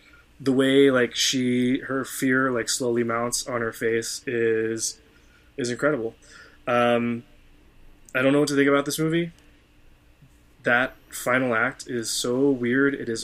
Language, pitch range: English, 110-130 Hz